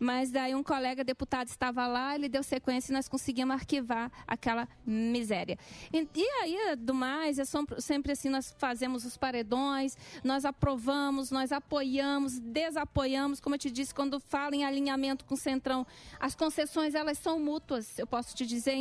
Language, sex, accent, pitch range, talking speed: Portuguese, female, Brazilian, 255-290 Hz, 170 wpm